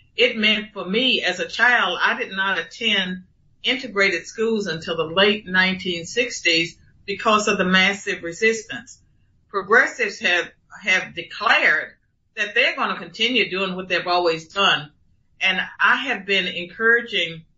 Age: 50-69